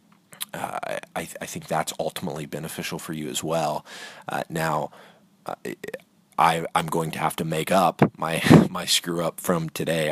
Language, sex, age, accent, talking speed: English, male, 30-49, American, 170 wpm